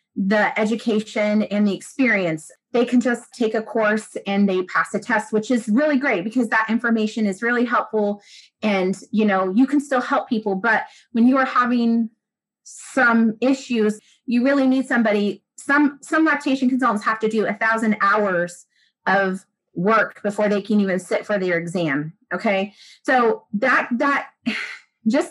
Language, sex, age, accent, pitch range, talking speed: English, female, 30-49, American, 205-255 Hz, 165 wpm